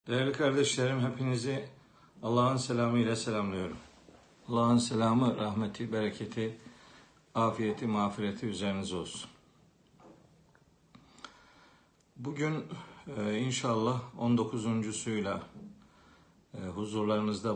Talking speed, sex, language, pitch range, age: 60 wpm, male, Turkish, 100-135 Hz, 60-79